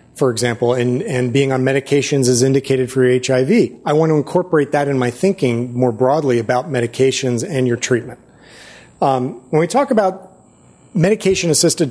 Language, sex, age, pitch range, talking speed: English, male, 40-59, 125-160 Hz, 165 wpm